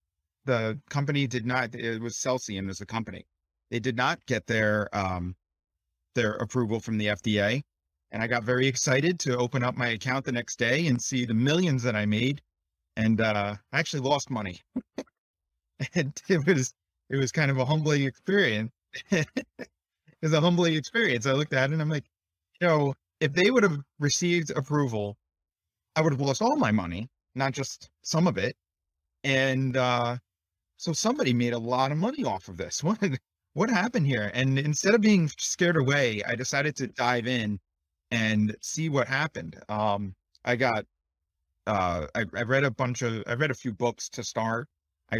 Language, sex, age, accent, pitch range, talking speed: English, male, 30-49, American, 100-135 Hz, 185 wpm